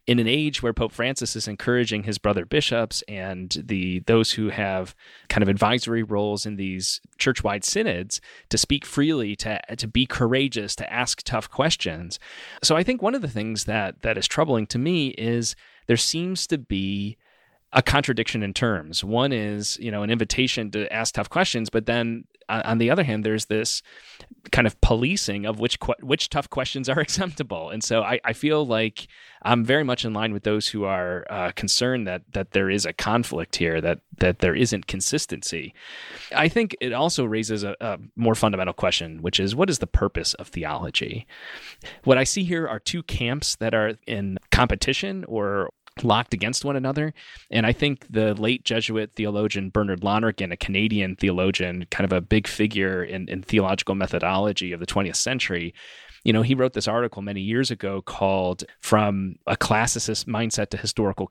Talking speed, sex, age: 185 wpm, male, 30-49